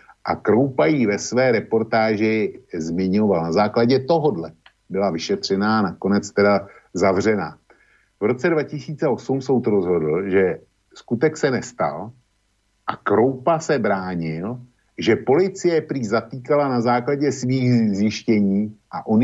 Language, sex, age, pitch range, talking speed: Slovak, male, 50-69, 95-125 Hz, 120 wpm